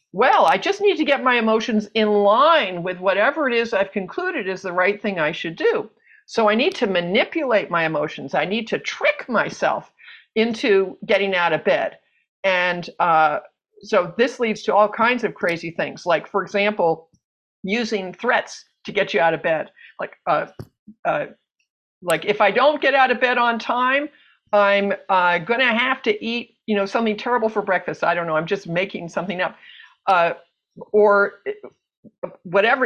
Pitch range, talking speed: 185-235 Hz, 180 wpm